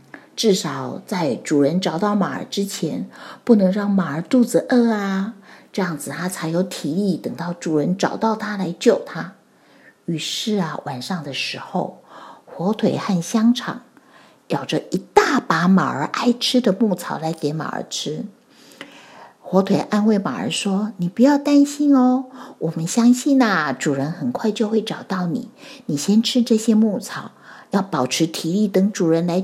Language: Chinese